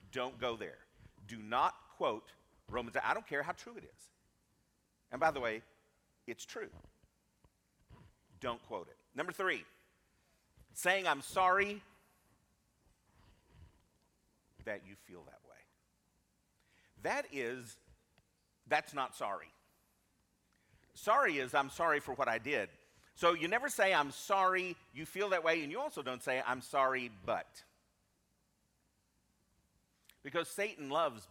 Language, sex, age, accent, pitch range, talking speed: English, male, 50-69, American, 120-180 Hz, 130 wpm